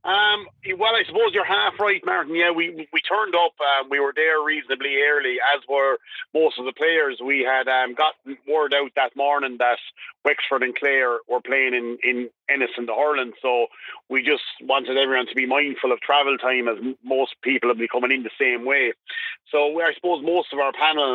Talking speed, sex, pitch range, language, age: 210 wpm, male, 125-160 Hz, English, 30-49